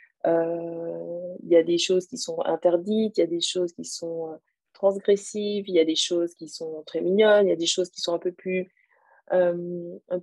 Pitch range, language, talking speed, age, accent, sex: 175-205 Hz, French, 230 wpm, 30-49, French, female